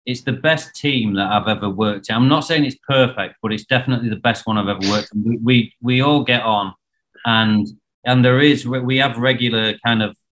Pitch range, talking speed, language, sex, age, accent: 105-125 Hz, 220 wpm, English, male, 30-49, British